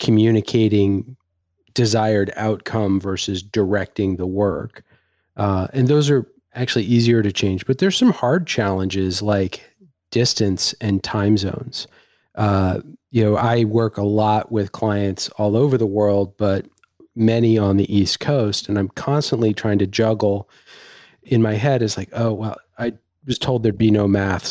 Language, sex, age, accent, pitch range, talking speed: English, male, 40-59, American, 100-120 Hz, 155 wpm